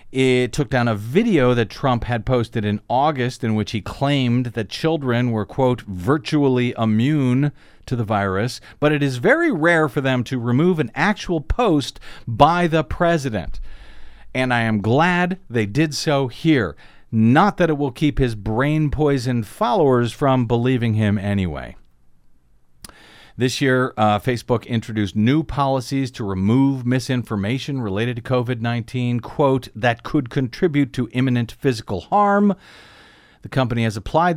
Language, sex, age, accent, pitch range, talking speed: English, male, 50-69, American, 110-140 Hz, 150 wpm